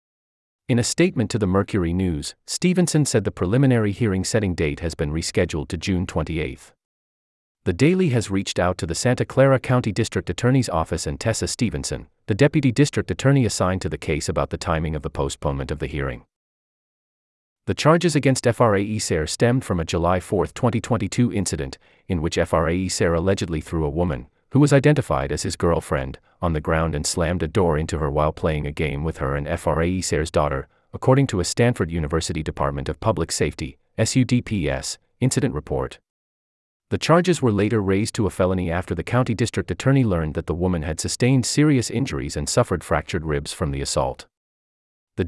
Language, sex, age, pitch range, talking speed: English, male, 30-49, 80-120 Hz, 180 wpm